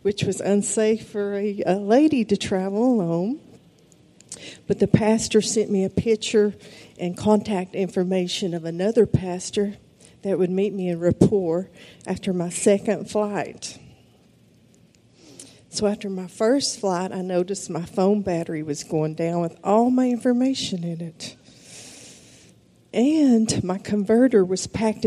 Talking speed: 135 wpm